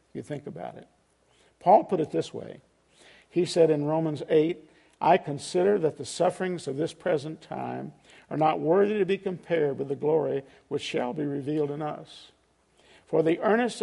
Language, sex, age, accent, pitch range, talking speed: English, male, 50-69, American, 150-180 Hz, 180 wpm